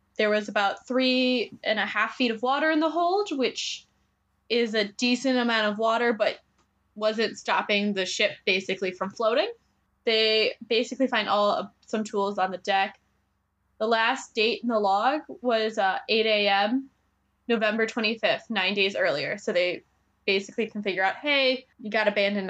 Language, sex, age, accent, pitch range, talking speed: English, female, 10-29, American, 200-245 Hz, 170 wpm